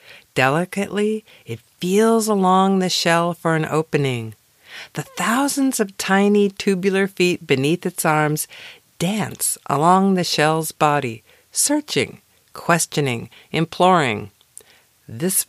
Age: 50-69